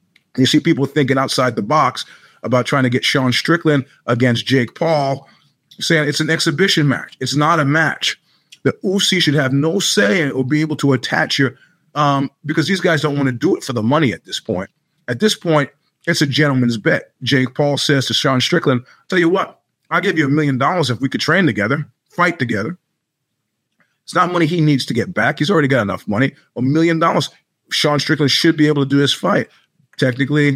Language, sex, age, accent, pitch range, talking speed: English, male, 30-49, American, 125-155 Hz, 210 wpm